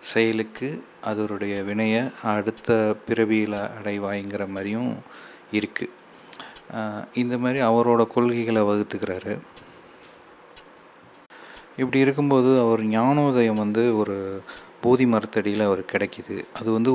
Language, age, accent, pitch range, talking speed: Tamil, 30-49, native, 105-115 Hz, 90 wpm